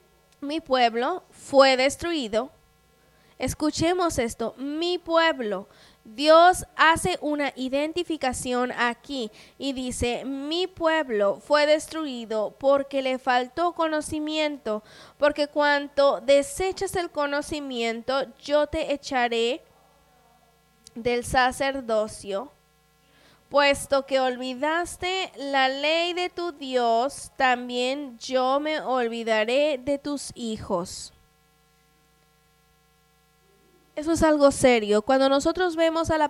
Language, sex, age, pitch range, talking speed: English, female, 20-39, 240-290 Hz, 95 wpm